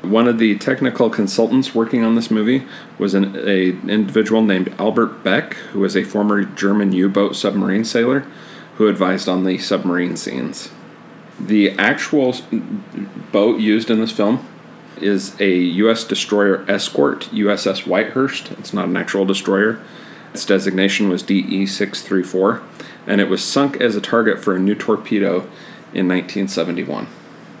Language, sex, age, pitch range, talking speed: English, male, 40-59, 95-115 Hz, 140 wpm